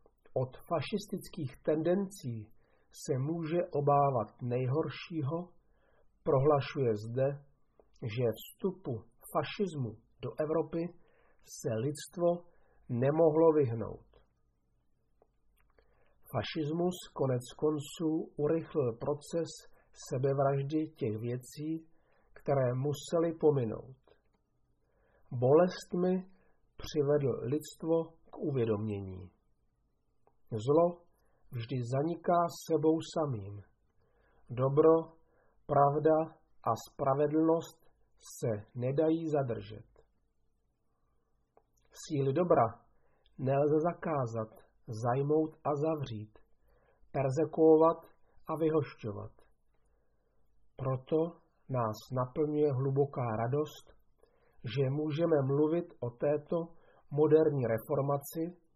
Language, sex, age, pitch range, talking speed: Czech, male, 50-69, 125-160 Hz, 70 wpm